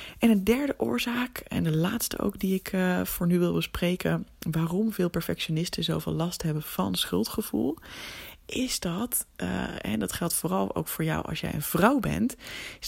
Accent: Dutch